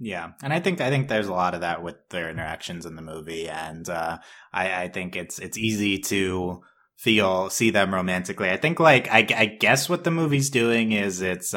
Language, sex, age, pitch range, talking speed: English, male, 20-39, 90-105 Hz, 220 wpm